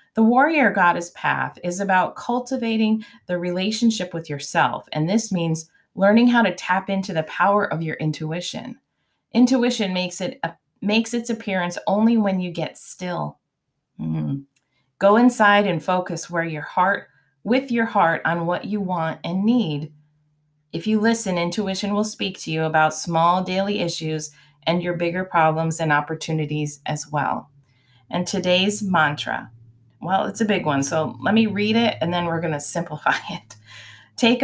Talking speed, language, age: 160 wpm, English, 30-49